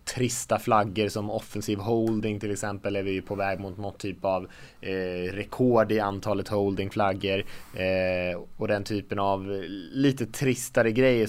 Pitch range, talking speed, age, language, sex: 100-130 Hz, 160 wpm, 20-39, Swedish, male